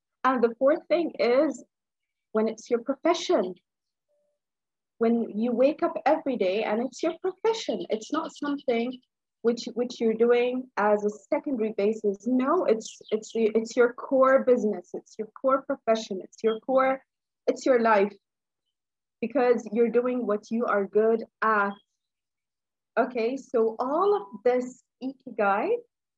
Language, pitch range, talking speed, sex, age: English, 215-275 Hz, 140 wpm, female, 30-49